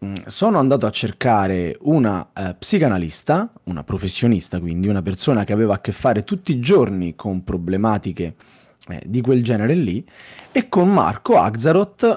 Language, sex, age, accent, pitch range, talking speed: Italian, male, 30-49, native, 110-165 Hz, 150 wpm